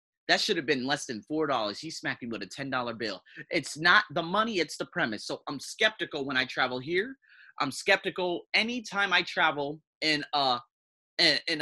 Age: 30-49